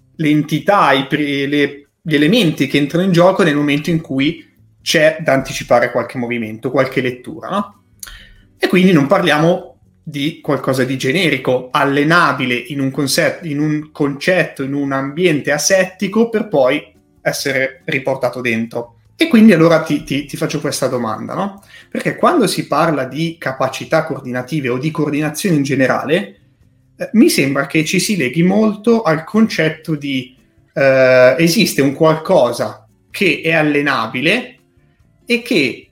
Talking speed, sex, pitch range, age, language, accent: 145 wpm, male, 135-180 Hz, 30-49, Italian, native